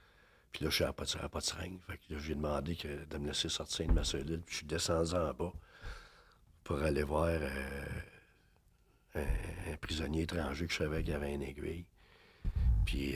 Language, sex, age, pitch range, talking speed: French, male, 60-79, 80-95 Hz, 200 wpm